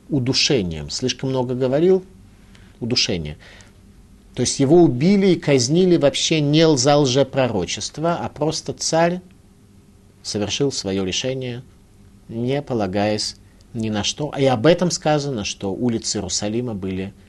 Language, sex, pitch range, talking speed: Russian, male, 100-145 Hz, 120 wpm